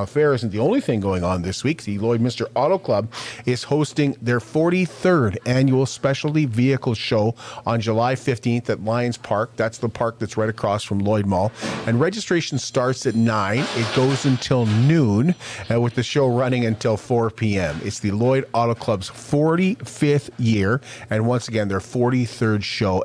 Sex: male